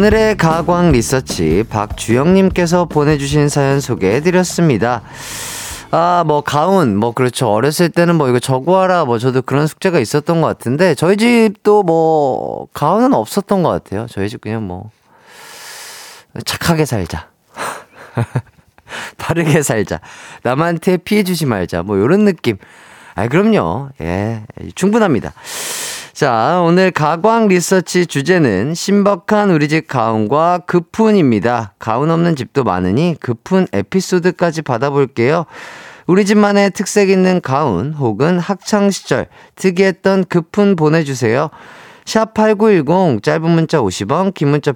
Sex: male